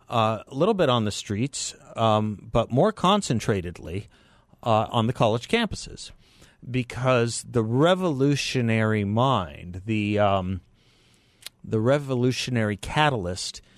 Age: 50-69